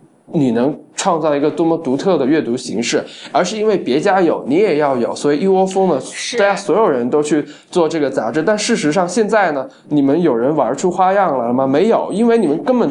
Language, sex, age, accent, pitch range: Chinese, male, 20-39, native, 150-215 Hz